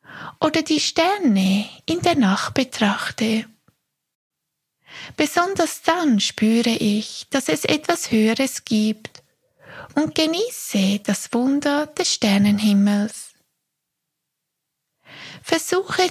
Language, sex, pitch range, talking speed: German, female, 205-305 Hz, 85 wpm